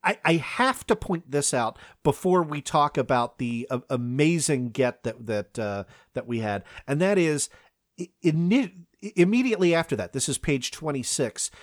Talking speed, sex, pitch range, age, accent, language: 150 wpm, male, 130-185 Hz, 40-59, American, English